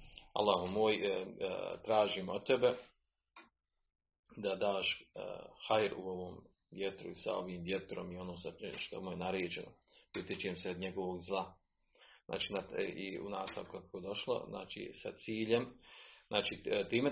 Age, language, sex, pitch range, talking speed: 40-59, Croatian, male, 90-120 Hz, 125 wpm